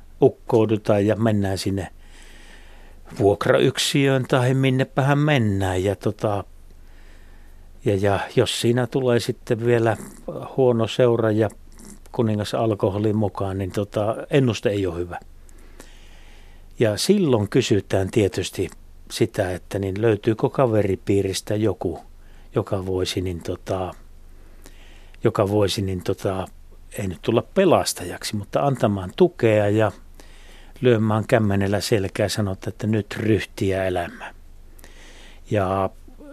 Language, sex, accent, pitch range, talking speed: Finnish, male, native, 95-115 Hz, 100 wpm